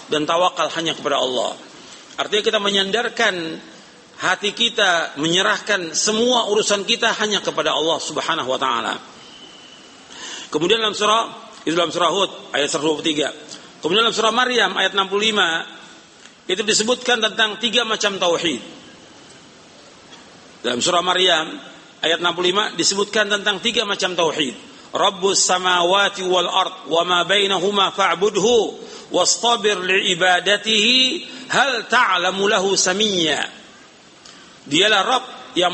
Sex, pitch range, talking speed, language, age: male, 180-220 Hz, 95 wpm, Indonesian, 50-69